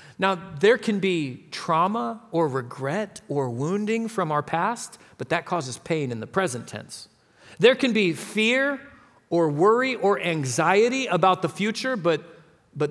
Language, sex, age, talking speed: English, male, 40-59, 155 wpm